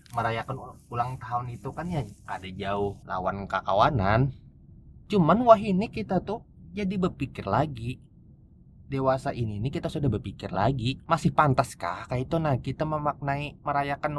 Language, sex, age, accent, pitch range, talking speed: Indonesian, male, 20-39, native, 105-145 Hz, 140 wpm